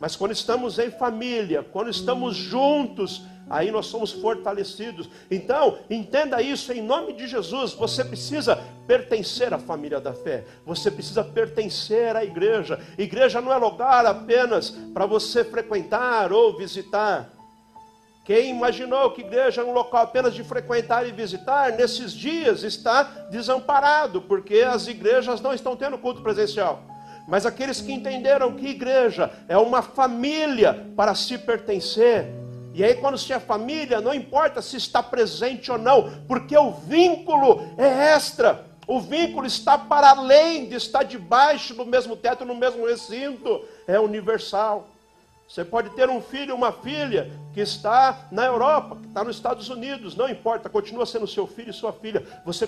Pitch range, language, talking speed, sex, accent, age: 210-270 Hz, Portuguese, 160 wpm, male, Brazilian, 50-69